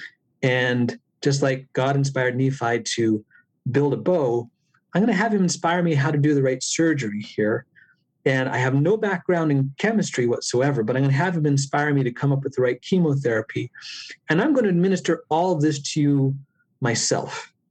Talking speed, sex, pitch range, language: 195 wpm, male, 125-160 Hz, English